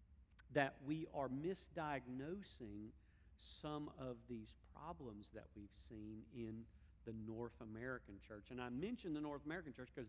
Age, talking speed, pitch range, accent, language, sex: 50-69, 145 wpm, 115-175 Hz, American, English, male